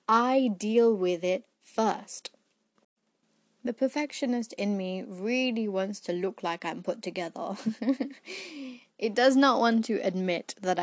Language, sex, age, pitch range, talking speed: English, female, 20-39, 190-245 Hz, 135 wpm